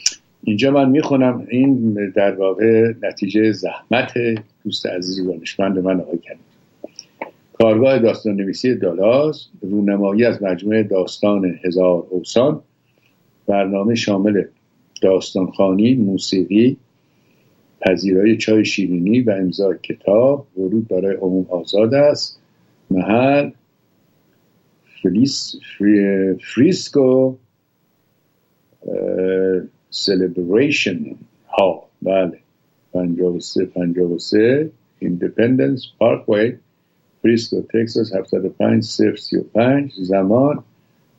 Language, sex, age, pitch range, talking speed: Persian, male, 60-79, 95-115 Hz, 80 wpm